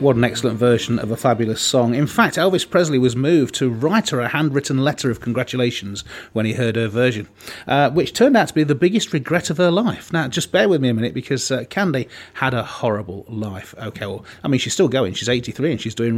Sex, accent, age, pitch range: male, British, 30-49, 115-140 Hz